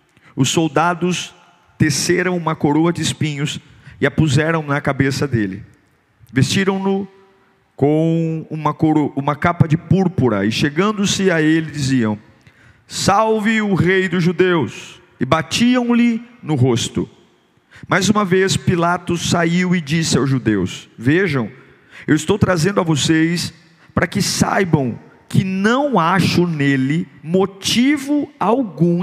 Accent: Brazilian